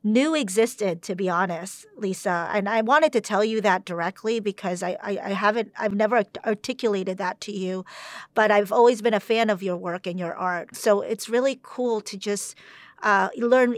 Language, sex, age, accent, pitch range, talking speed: English, female, 40-59, American, 190-230 Hz, 195 wpm